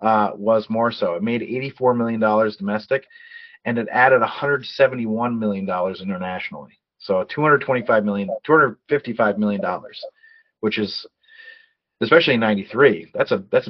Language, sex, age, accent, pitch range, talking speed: English, male, 30-49, American, 105-150 Hz, 140 wpm